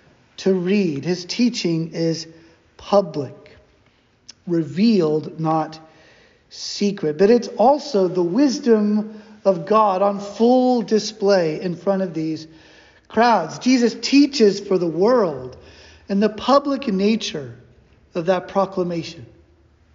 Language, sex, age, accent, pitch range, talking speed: English, male, 40-59, American, 165-220 Hz, 110 wpm